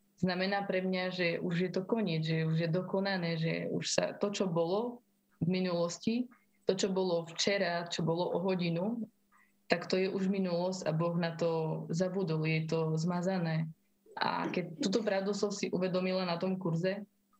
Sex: female